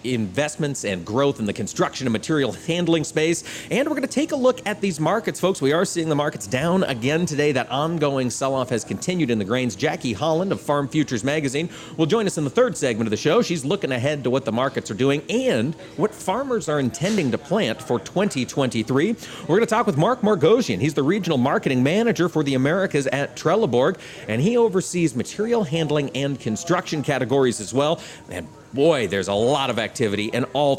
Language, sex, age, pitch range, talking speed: English, male, 40-59, 135-185 Hz, 210 wpm